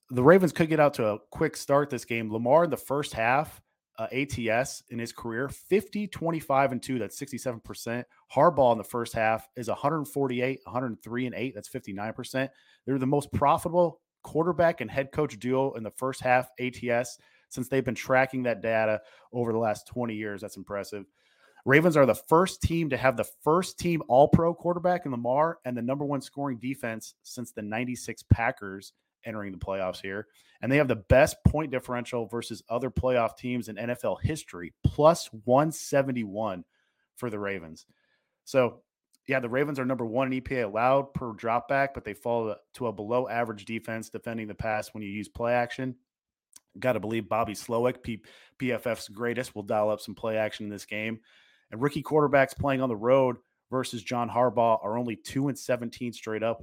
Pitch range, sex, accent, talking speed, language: 110-135 Hz, male, American, 180 wpm, English